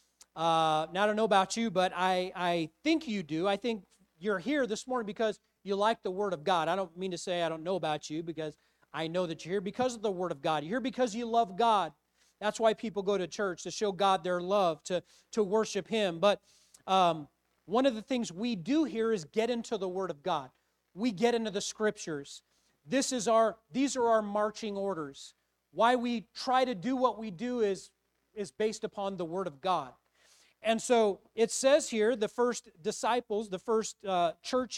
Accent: American